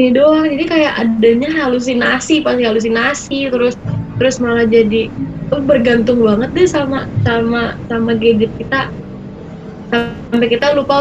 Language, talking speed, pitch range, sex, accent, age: Indonesian, 125 wpm, 220-255 Hz, female, native, 20-39